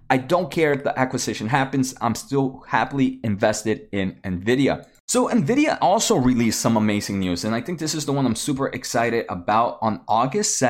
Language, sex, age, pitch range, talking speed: English, male, 30-49, 110-140 Hz, 185 wpm